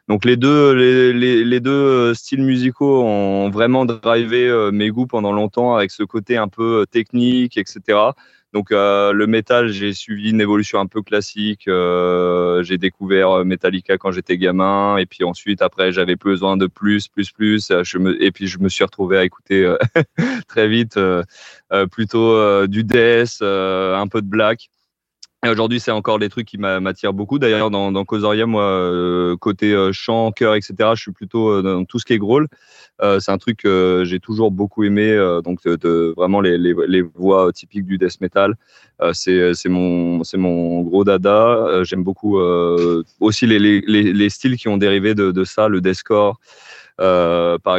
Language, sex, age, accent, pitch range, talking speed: French, male, 20-39, French, 95-110 Hz, 185 wpm